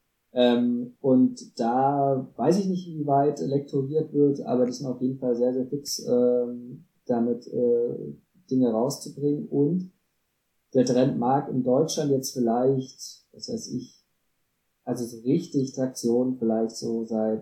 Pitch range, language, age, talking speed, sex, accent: 115-140 Hz, German, 20-39, 145 wpm, male, German